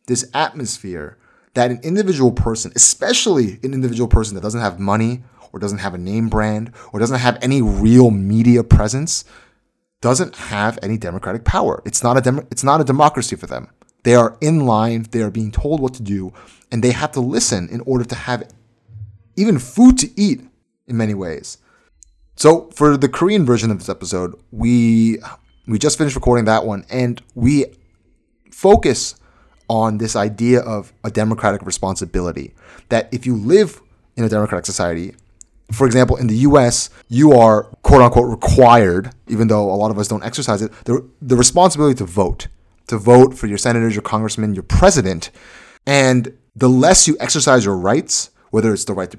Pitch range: 105-130 Hz